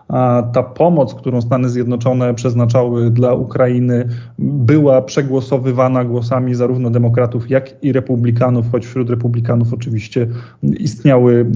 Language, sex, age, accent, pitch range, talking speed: Polish, male, 20-39, native, 120-135 Hz, 110 wpm